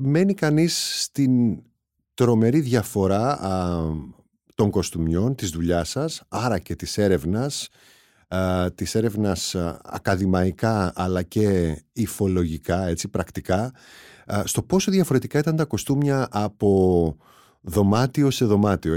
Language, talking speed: Greek, 100 wpm